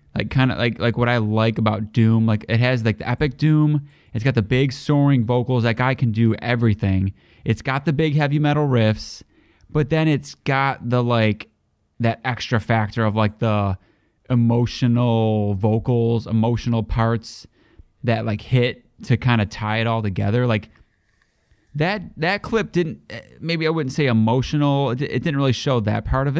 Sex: male